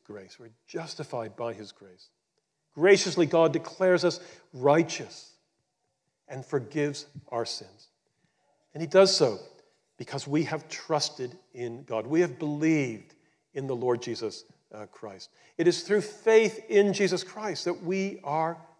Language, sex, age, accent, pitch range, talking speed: English, male, 50-69, American, 150-200 Hz, 135 wpm